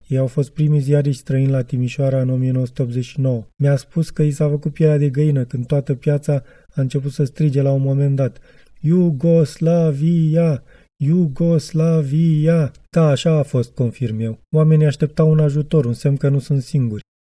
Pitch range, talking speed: 135-155 Hz, 165 wpm